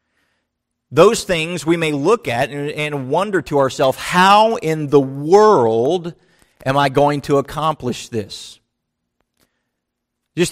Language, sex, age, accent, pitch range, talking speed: English, male, 40-59, American, 145-185 Hz, 120 wpm